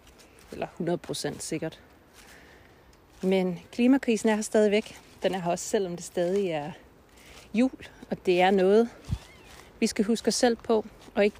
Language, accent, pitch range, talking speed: Danish, native, 165-215 Hz, 155 wpm